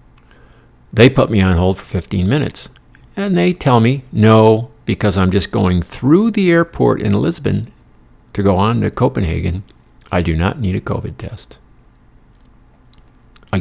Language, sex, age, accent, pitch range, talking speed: English, male, 60-79, American, 90-140 Hz, 155 wpm